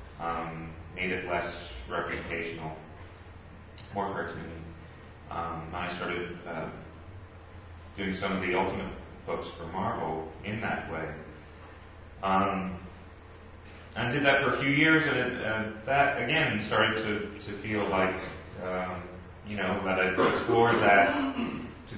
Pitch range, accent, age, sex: 85-100 Hz, American, 30-49, male